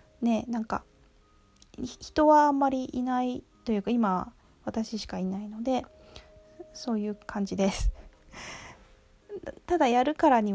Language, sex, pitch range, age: Japanese, female, 190-235 Hz, 20-39